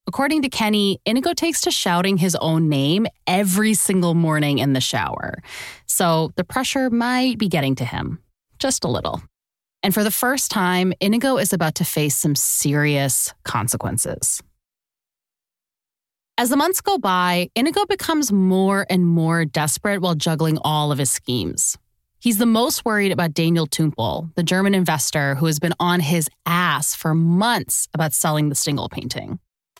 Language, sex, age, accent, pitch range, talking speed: English, female, 20-39, American, 160-220 Hz, 160 wpm